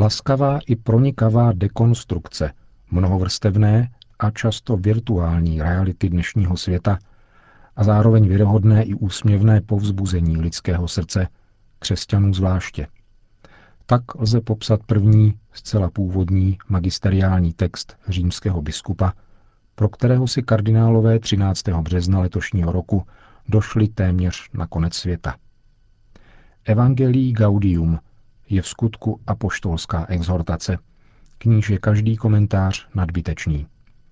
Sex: male